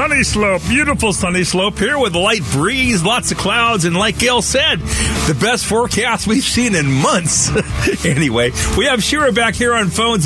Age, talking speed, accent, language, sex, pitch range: 50-69, 185 wpm, American, English, male, 130-195 Hz